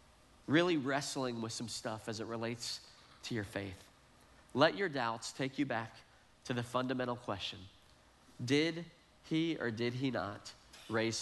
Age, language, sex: 40-59, English, male